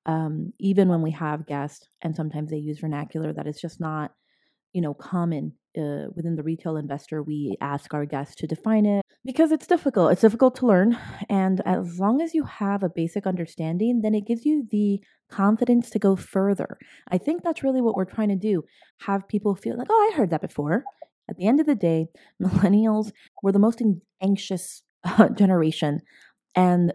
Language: English